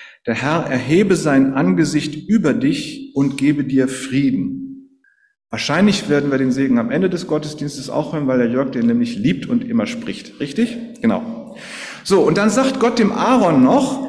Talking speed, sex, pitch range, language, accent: 175 wpm, male, 150-245 Hz, German, German